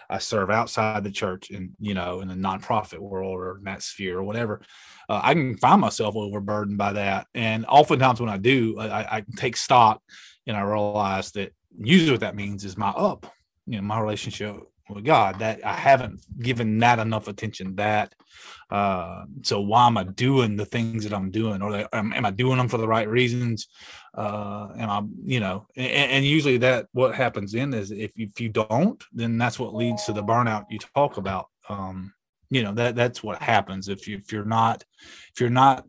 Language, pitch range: English, 100-120 Hz